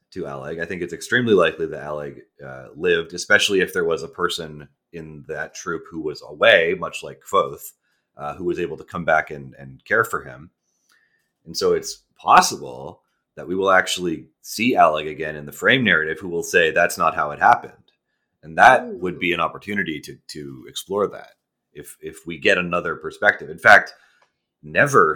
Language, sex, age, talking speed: English, male, 30-49, 190 wpm